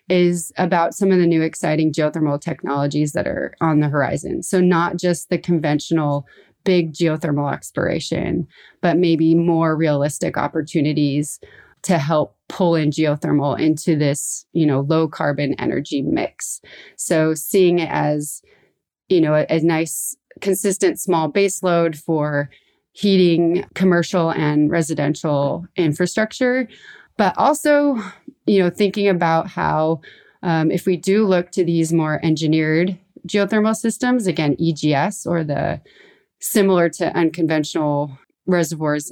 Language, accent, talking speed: English, American, 130 wpm